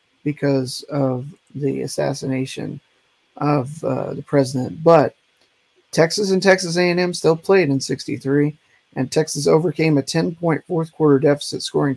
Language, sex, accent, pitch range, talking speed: English, male, American, 135-150 Hz, 135 wpm